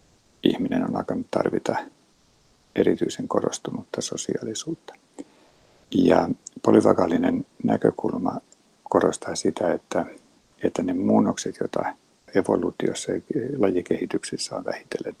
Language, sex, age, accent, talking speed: Finnish, male, 60-79, native, 85 wpm